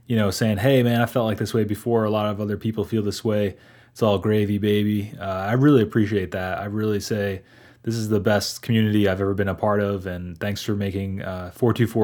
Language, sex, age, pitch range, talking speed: English, male, 20-39, 95-115 Hz, 240 wpm